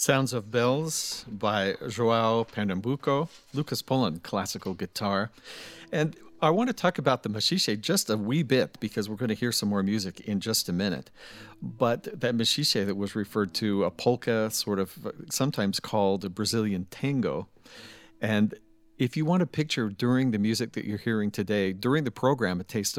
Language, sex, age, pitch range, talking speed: English, male, 50-69, 100-125 Hz, 180 wpm